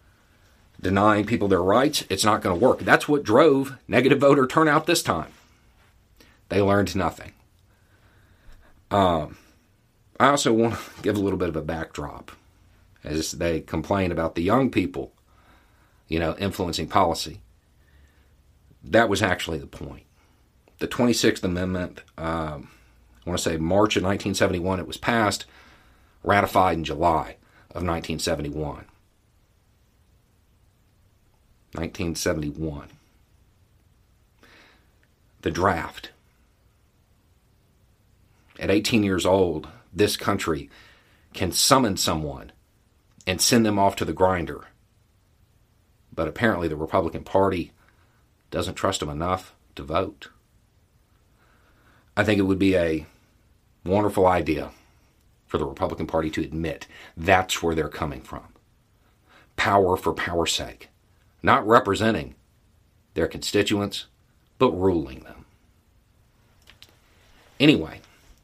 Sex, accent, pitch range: male, American, 80-105 Hz